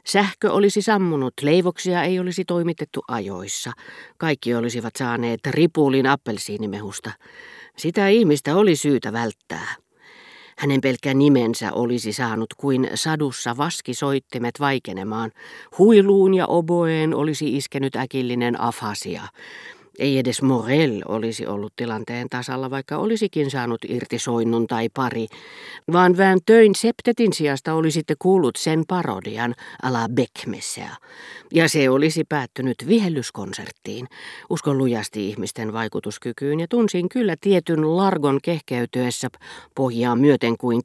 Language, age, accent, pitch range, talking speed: Finnish, 50-69, native, 120-170 Hz, 115 wpm